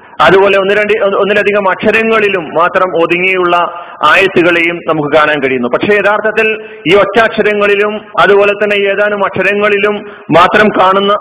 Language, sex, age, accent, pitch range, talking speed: Malayalam, male, 30-49, native, 180-215 Hz, 105 wpm